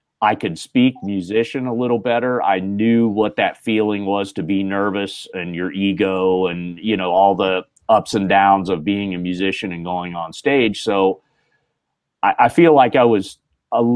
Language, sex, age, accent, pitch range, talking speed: English, male, 40-59, American, 100-130 Hz, 185 wpm